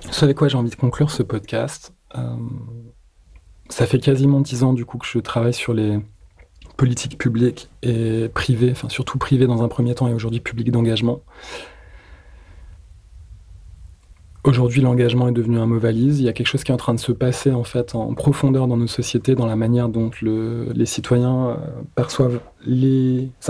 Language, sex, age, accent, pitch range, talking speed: French, male, 20-39, French, 115-135 Hz, 185 wpm